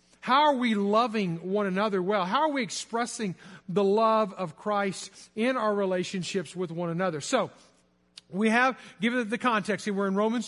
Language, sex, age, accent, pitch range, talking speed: English, male, 50-69, American, 190-245 Hz, 170 wpm